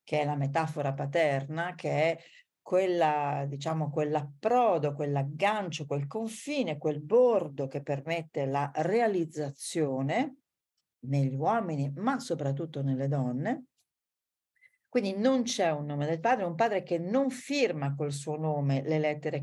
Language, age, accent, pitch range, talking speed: Italian, 40-59, native, 140-200 Hz, 130 wpm